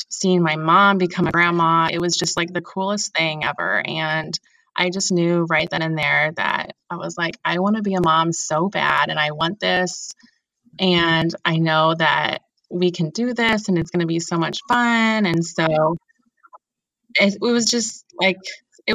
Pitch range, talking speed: 165-195 Hz, 195 wpm